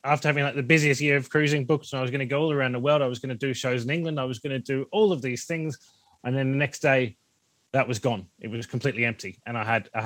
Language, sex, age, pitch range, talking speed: English, male, 30-49, 115-145 Hz, 310 wpm